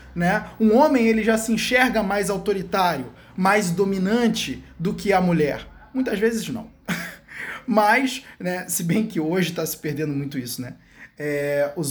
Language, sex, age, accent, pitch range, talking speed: Portuguese, male, 20-39, Brazilian, 170-225 Hz, 150 wpm